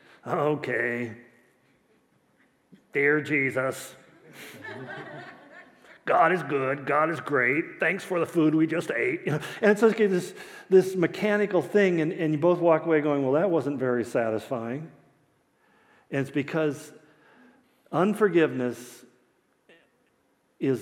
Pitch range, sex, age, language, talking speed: 130-165 Hz, male, 50-69, English, 125 wpm